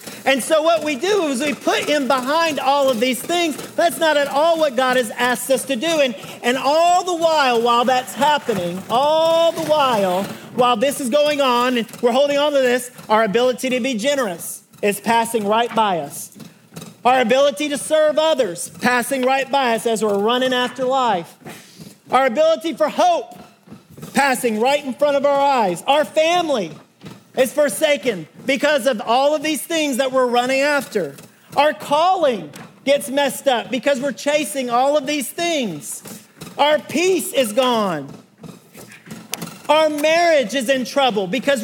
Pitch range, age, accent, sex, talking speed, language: 225-295 Hz, 40-59, American, male, 170 wpm, English